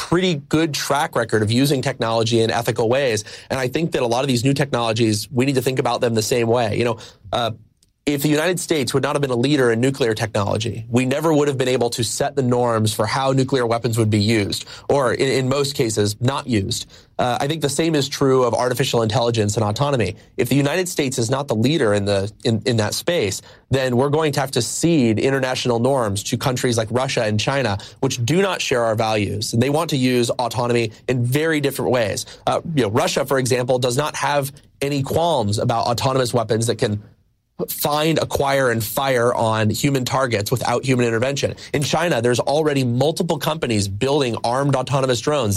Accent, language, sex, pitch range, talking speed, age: American, English, male, 115-140 Hz, 215 wpm, 30-49